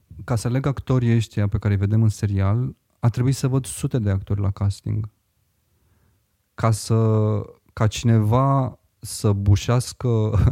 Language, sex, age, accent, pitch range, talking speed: Romanian, male, 30-49, native, 100-115 Hz, 150 wpm